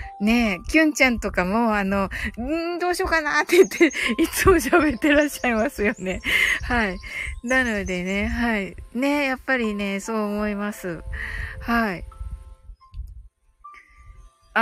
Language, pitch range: Japanese, 185-295 Hz